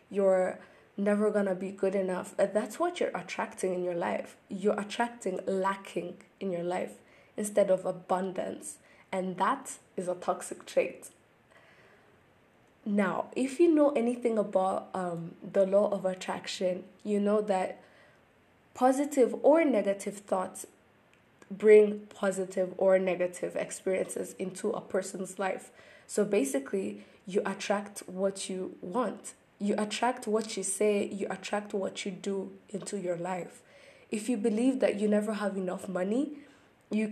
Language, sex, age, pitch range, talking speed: English, female, 20-39, 190-225 Hz, 140 wpm